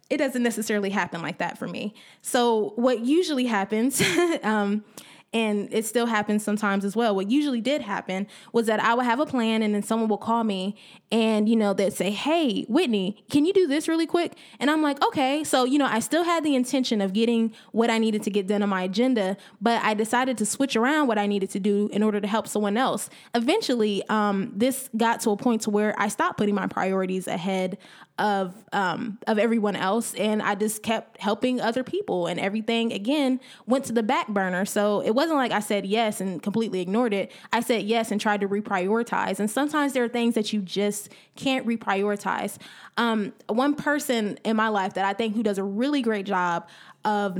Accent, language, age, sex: American, English, 10-29, female